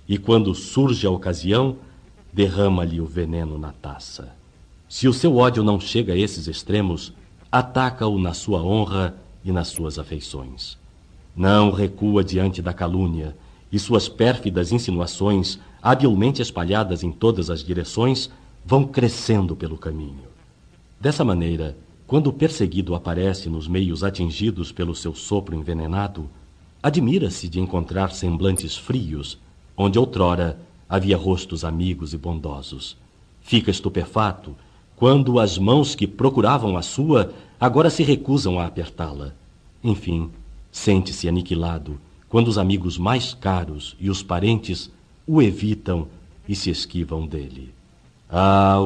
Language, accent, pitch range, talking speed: Portuguese, Brazilian, 85-110 Hz, 125 wpm